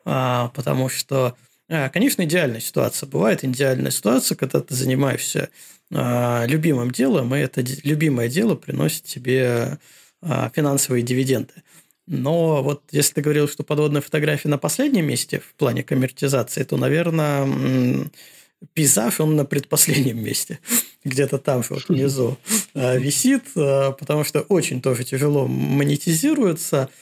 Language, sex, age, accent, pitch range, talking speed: Russian, male, 20-39, native, 130-155 Hz, 115 wpm